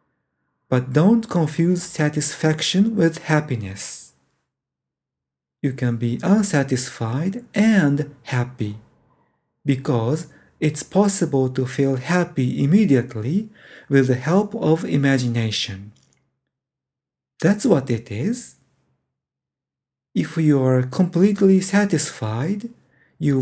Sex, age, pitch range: male, 50-69, 120-175 Hz